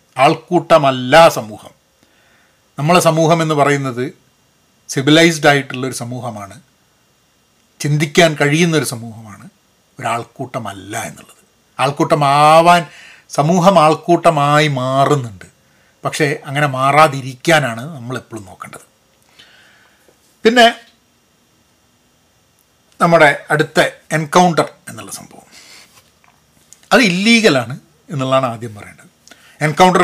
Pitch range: 130-180 Hz